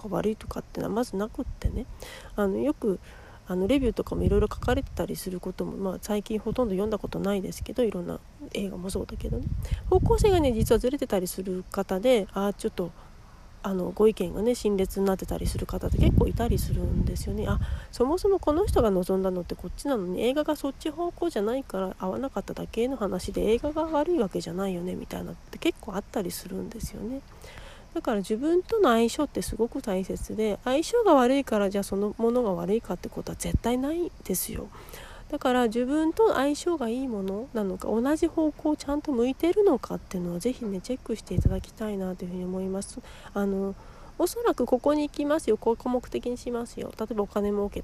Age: 40-59